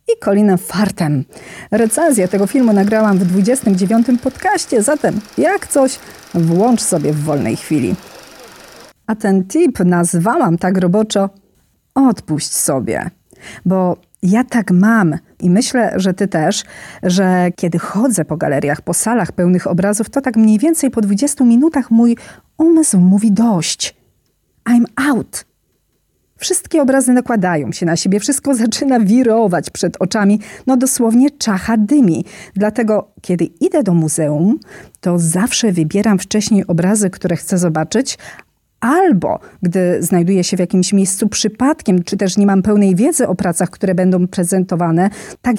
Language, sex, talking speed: Polish, female, 140 wpm